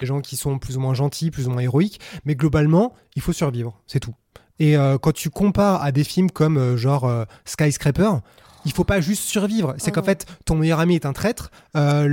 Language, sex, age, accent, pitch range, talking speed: French, male, 20-39, French, 140-185 Hz, 245 wpm